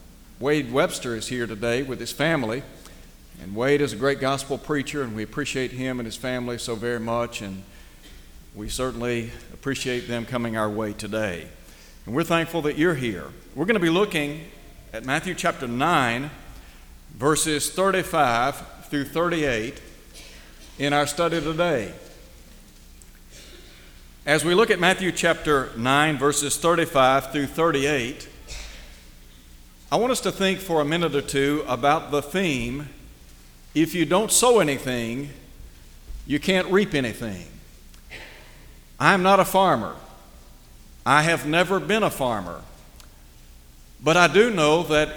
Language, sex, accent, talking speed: English, male, American, 140 wpm